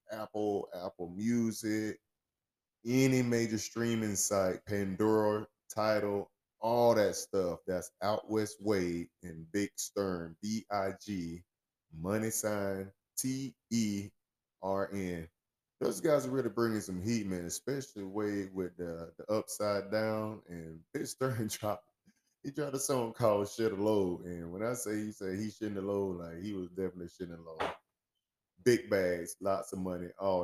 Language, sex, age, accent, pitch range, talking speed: English, male, 20-39, American, 90-110 Hz, 150 wpm